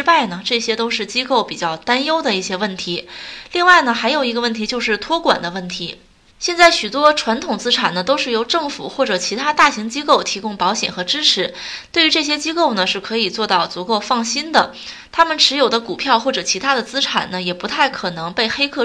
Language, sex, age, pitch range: Chinese, female, 20-39, 205-280 Hz